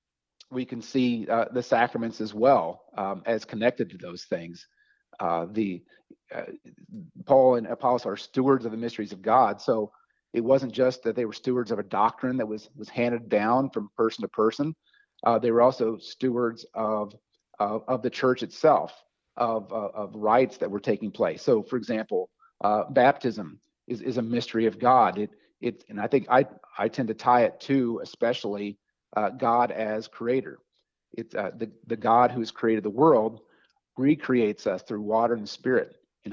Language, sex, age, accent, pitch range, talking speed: English, male, 40-59, American, 110-125 Hz, 180 wpm